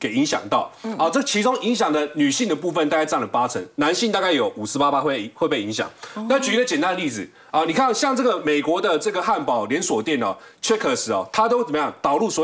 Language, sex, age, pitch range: Chinese, male, 30-49, 170-270 Hz